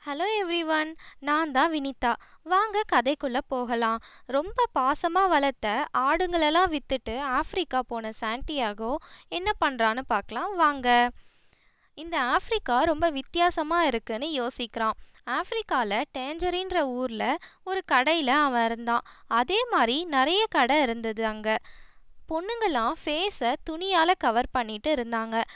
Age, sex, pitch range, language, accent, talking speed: 20-39, female, 245-345 Hz, Tamil, native, 105 wpm